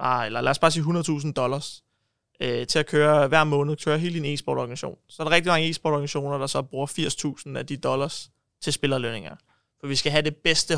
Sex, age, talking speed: male, 20-39, 215 wpm